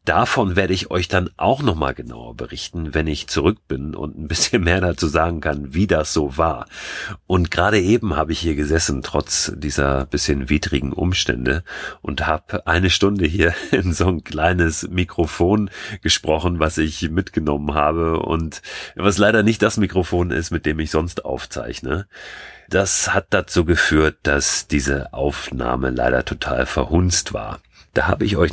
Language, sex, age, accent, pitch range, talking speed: German, male, 40-59, German, 75-90 Hz, 165 wpm